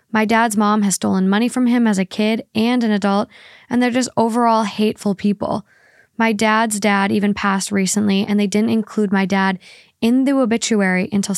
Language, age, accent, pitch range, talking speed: English, 10-29, American, 200-225 Hz, 190 wpm